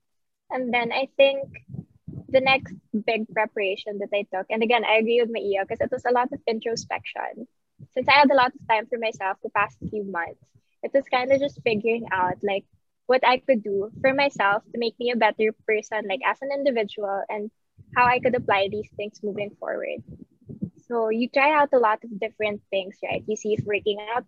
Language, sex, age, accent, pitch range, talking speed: English, female, 20-39, Filipino, 210-260 Hz, 210 wpm